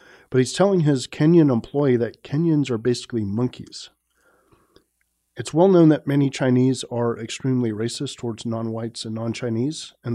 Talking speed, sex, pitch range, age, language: 150 wpm, male, 115-140 Hz, 40-59, English